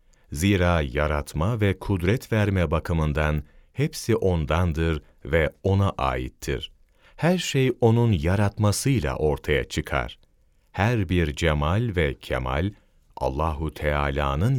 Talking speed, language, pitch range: 100 wpm, Turkish, 75-110 Hz